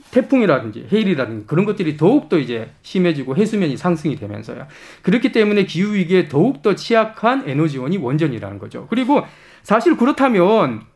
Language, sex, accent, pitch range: Korean, male, native, 155-225 Hz